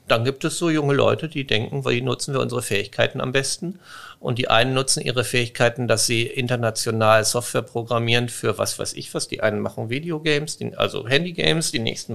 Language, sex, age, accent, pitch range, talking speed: German, male, 50-69, German, 120-155 Hz, 195 wpm